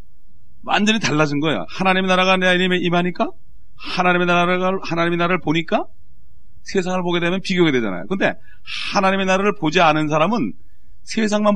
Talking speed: 130 wpm